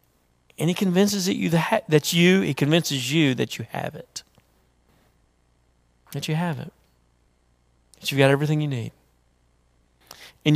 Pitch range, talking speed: 100-160 Hz, 135 wpm